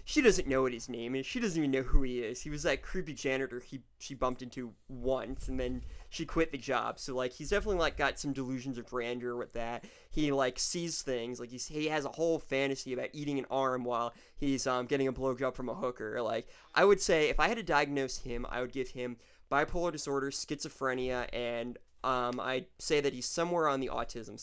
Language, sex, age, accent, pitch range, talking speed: English, male, 20-39, American, 125-155 Hz, 225 wpm